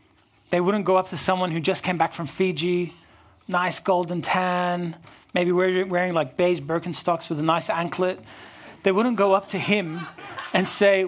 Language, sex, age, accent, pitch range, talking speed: English, male, 30-49, American, 150-185 Hz, 175 wpm